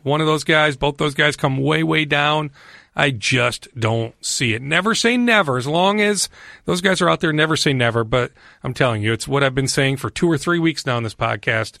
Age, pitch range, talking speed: 40-59, 120-150 Hz, 245 wpm